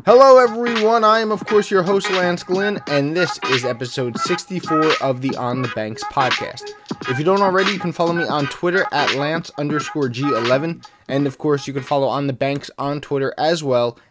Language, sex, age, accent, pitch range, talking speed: English, male, 20-39, American, 130-170 Hz, 205 wpm